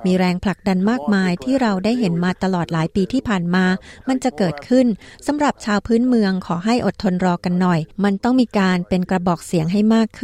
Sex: female